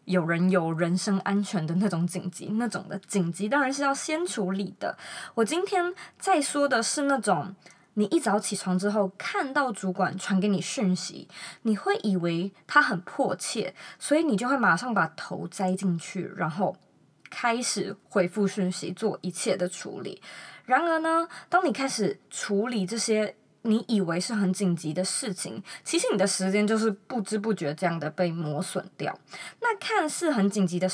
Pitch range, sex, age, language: 185-240 Hz, female, 20-39, Chinese